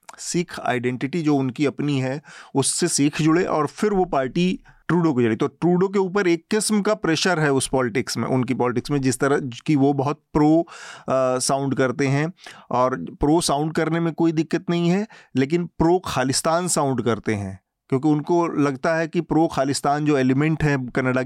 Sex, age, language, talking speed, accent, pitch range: male, 30-49, Hindi, 185 wpm, native, 120-150 Hz